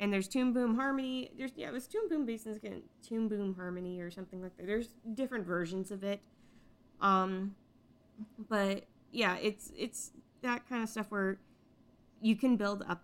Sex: female